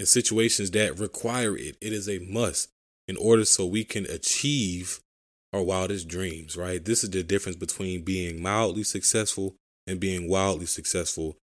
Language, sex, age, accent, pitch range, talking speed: English, male, 20-39, American, 90-110 Hz, 160 wpm